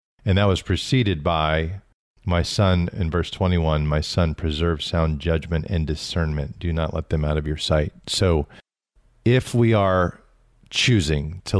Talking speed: 160 wpm